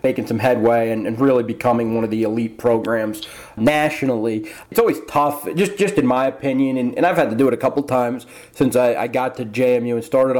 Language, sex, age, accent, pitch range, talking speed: English, male, 30-49, American, 120-140 Hz, 225 wpm